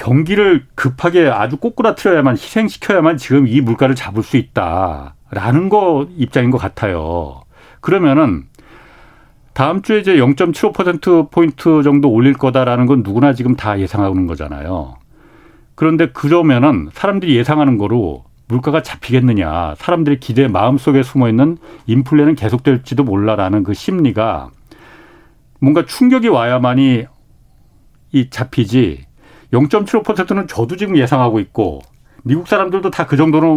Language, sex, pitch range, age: Korean, male, 115-155 Hz, 40-59